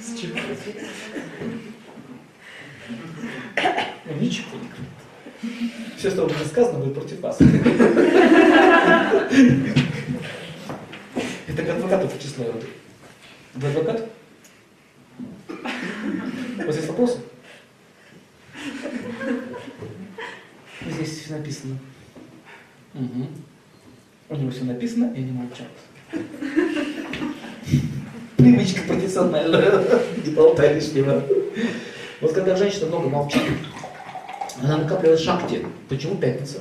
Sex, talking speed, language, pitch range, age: male, 80 wpm, Russian, 145-240 Hz, 20-39